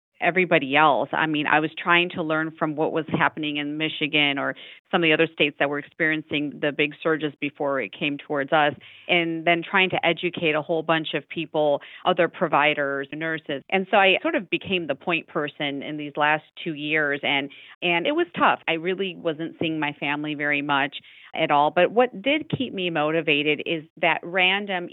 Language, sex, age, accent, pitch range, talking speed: English, female, 40-59, American, 150-170 Hz, 200 wpm